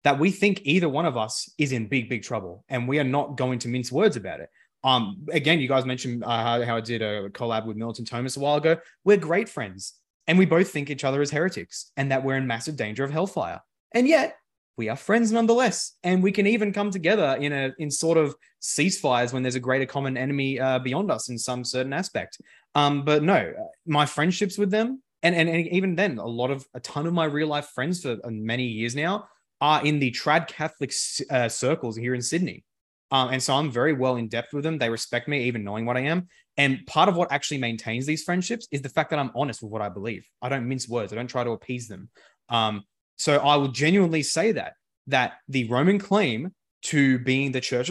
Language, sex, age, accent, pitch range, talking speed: English, male, 20-39, Australian, 120-165 Hz, 235 wpm